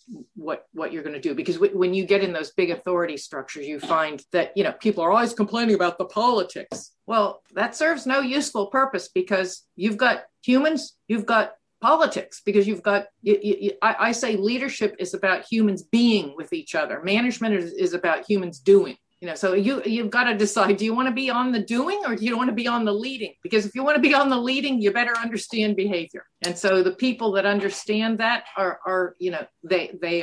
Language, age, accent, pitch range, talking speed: English, 50-69, American, 185-230 Hz, 225 wpm